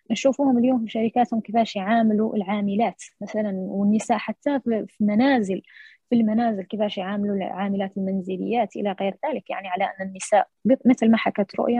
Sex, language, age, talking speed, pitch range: female, Arabic, 20-39, 140 wpm, 200-230 Hz